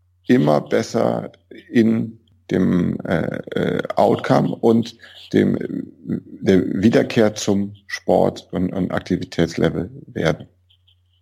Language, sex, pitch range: German, male, 90-115 Hz